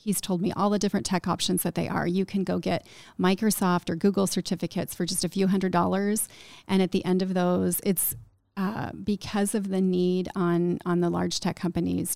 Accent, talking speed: American, 210 wpm